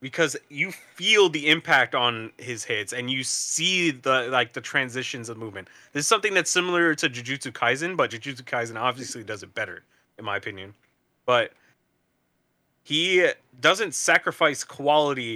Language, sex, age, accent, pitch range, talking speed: English, male, 20-39, American, 120-165 Hz, 155 wpm